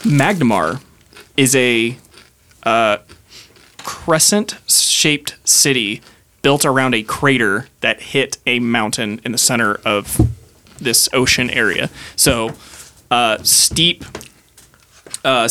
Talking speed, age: 95 wpm, 20-39